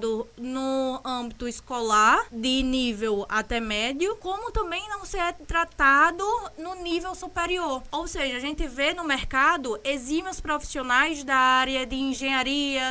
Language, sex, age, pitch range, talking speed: Portuguese, female, 20-39, 255-335 Hz, 130 wpm